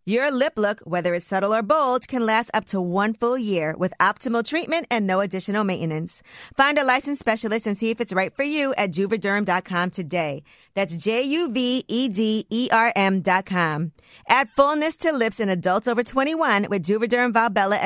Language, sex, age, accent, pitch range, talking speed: English, female, 40-59, American, 185-235 Hz, 165 wpm